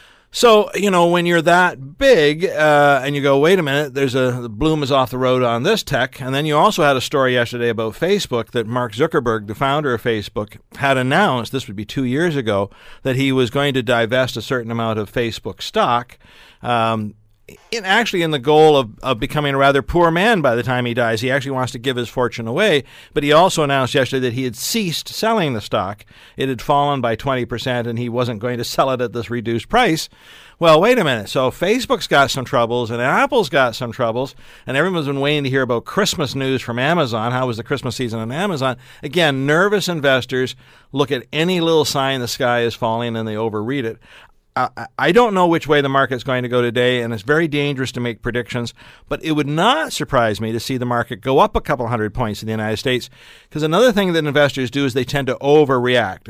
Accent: American